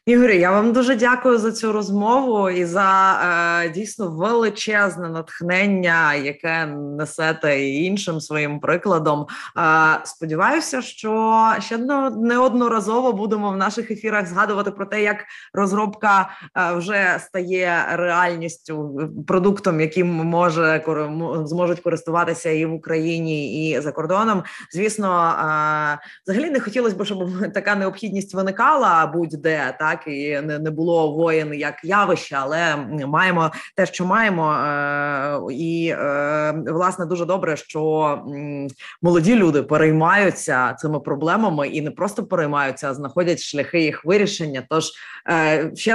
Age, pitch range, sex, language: 20-39, 155-200 Hz, female, Ukrainian